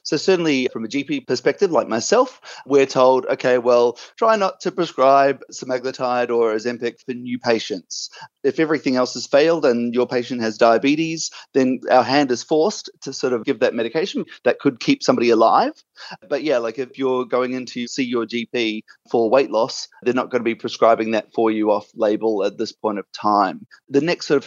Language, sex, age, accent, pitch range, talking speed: English, male, 30-49, Australian, 115-145 Hz, 200 wpm